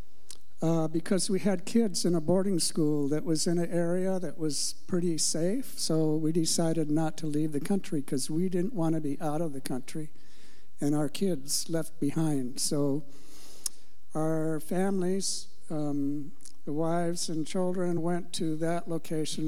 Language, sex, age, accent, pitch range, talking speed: English, male, 60-79, American, 150-180 Hz, 165 wpm